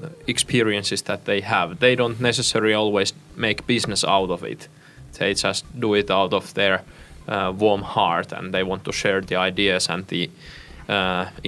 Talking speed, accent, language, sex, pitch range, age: 175 wpm, Finnish, Russian, male, 95-125 Hz, 20-39